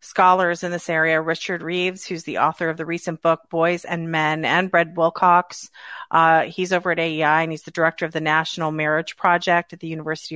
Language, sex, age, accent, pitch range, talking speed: English, female, 40-59, American, 165-200 Hz, 210 wpm